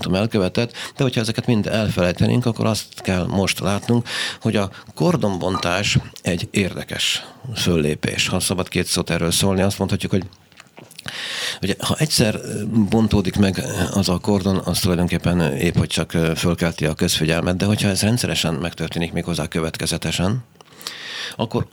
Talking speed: 140 wpm